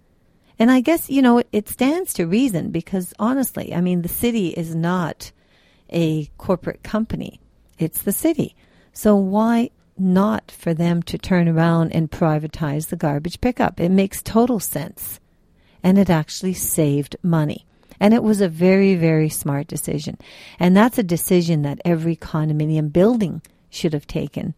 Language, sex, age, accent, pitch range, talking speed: English, female, 50-69, American, 155-205 Hz, 155 wpm